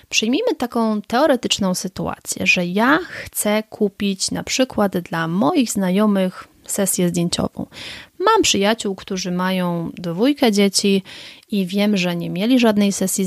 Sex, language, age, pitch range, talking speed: female, Polish, 30-49, 185-225 Hz, 125 wpm